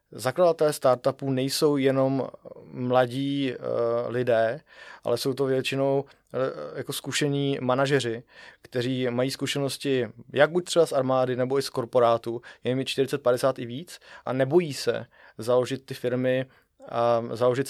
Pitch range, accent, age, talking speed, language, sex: 125-140 Hz, native, 20-39, 135 wpm, Czech, male